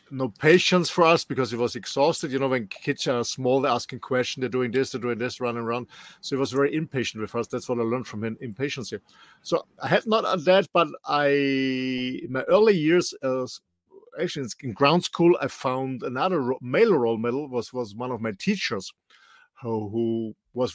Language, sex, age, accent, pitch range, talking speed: English, male, 50-69, German, 120-155 Hz, 210 wpm